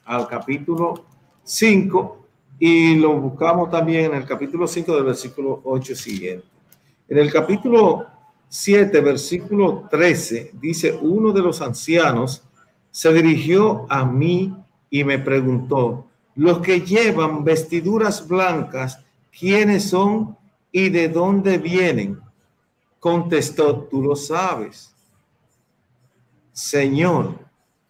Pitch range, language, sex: 140-185 Hz, Spanish, male